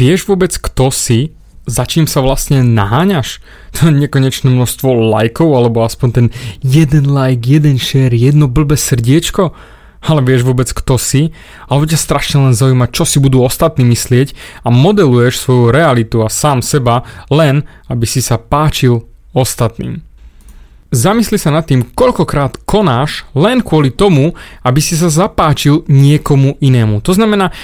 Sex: male